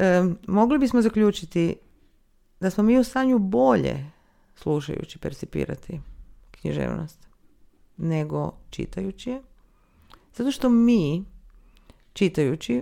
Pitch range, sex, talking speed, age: 155-210 Hz, female, 85 wpm, 40-59